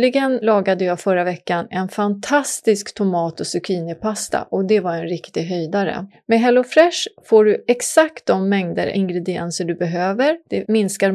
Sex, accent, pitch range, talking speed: female, Swedish, 175-235 Hz, 150 wpm